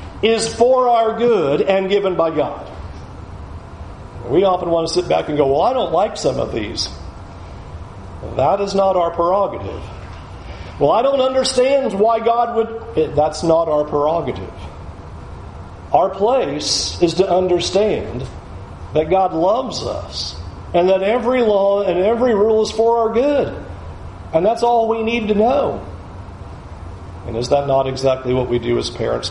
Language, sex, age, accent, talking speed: English, male, 50-69, American, 155 wpm